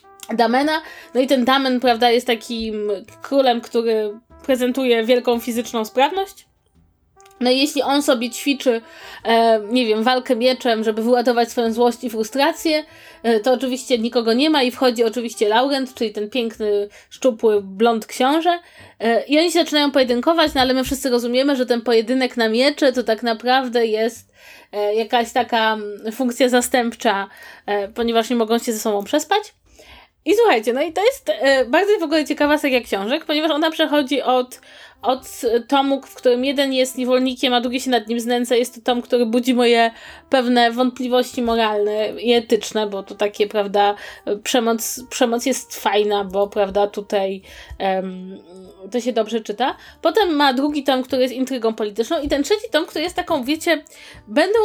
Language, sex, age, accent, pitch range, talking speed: Polish, female, 20-39, native, 230-280 Hz, 160 wpm